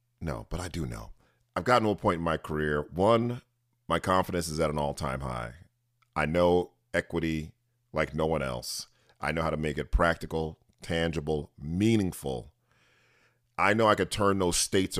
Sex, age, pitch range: male, 40-59, 80-95 Hz